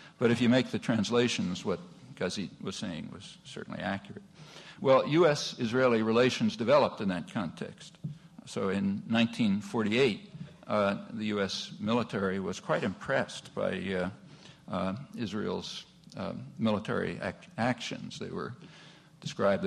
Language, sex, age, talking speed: English, male, 60-79, 120 wpm